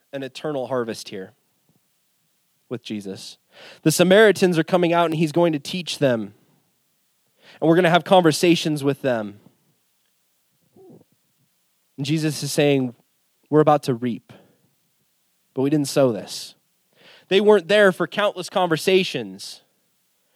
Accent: American